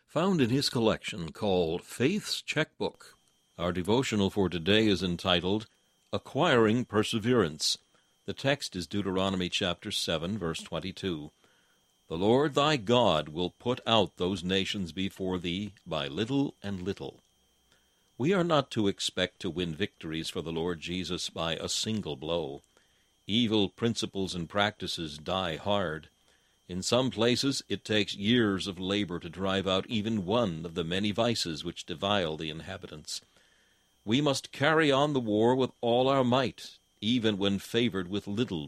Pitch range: 90-115 Hz